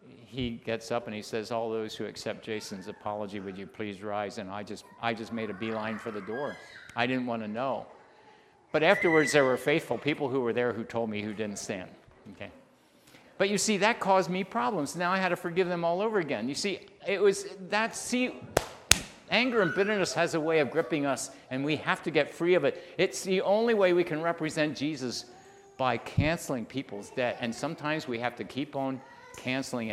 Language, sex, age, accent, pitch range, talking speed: English, male, 50-69, American, 120-190 Hz, 215 wpm